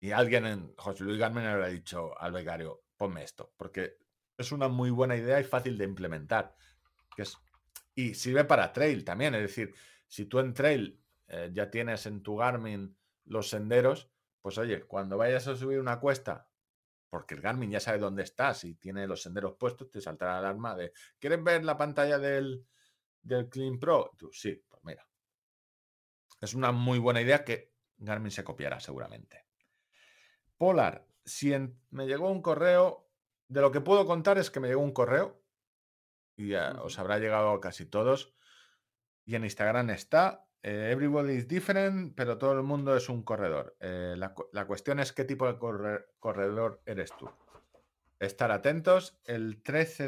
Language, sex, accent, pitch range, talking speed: Spanish, male, Spanish, 100-135 Hz, 175 wpm